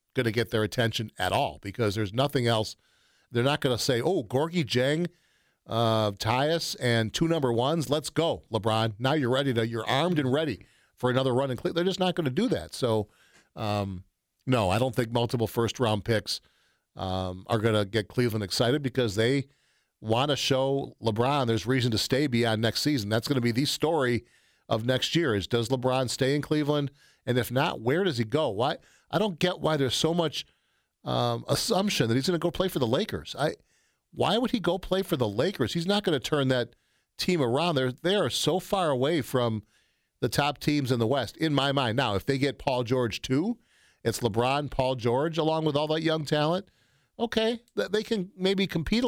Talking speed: 210 wpm